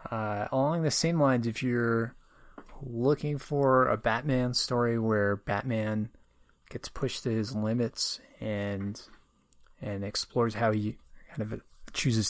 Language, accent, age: English, American, 30-49